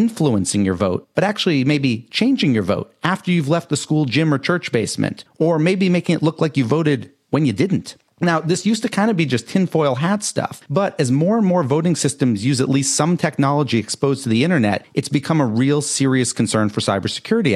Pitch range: 125-165 Hz